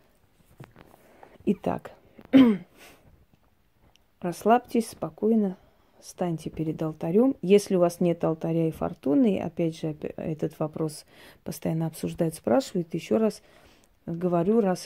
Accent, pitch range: native, 170-205 Hz